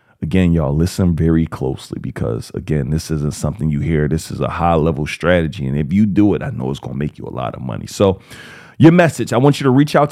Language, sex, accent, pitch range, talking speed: English, male, American, 105-145 Hz, 250 wpm